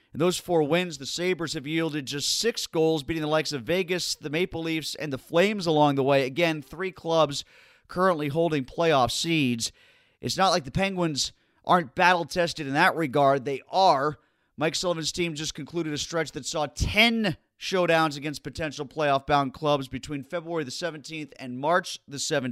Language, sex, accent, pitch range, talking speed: English, male, American, 145-180 Hz, 175 wpm